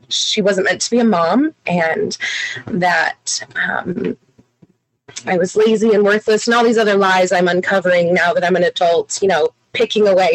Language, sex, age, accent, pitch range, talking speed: English, female, 30-49, American, 200-255 Hz, 180 wpm